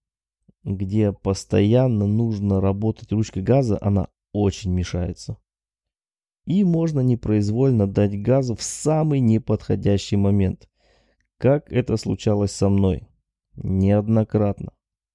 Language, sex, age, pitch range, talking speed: Russian, male, 20-39, 100-130 Hz, 95 wpm